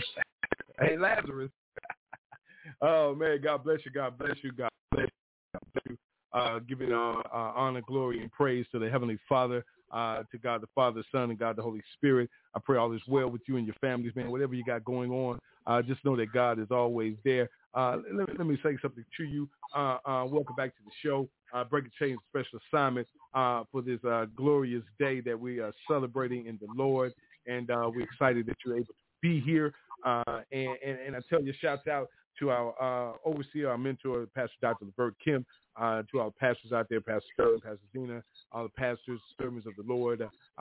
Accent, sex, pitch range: American, male, 115-140 Hz